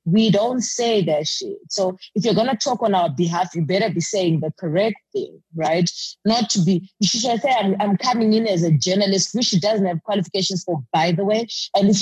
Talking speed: 230 wpm